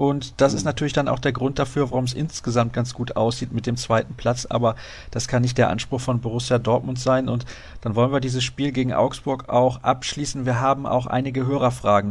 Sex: male